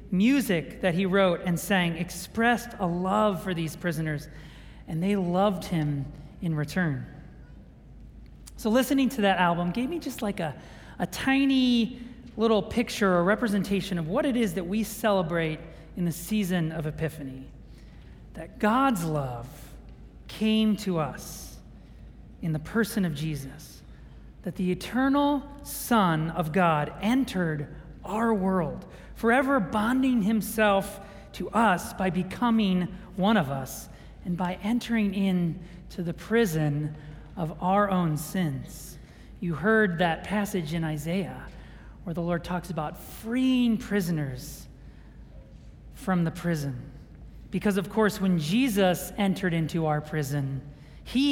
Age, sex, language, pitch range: 40-59, male, English, 160-210 Hz